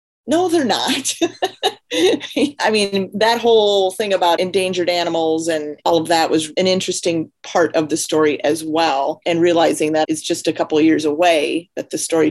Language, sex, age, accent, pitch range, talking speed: English, female, 40-59, American, 160-220 Hz, 180 wpm